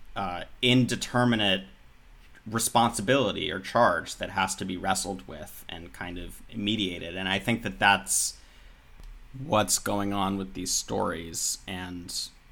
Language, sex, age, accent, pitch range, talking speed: English, male, 30-49, American, 90-105 Hz, 130 wpm